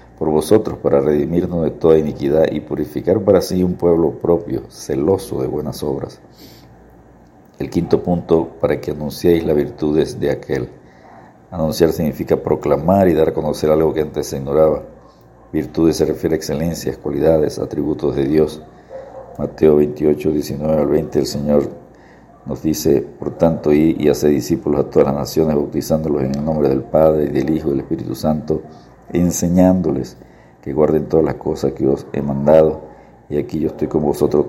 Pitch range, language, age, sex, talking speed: 70-80 Hz, Spanish, 50-69, male, 170 wpm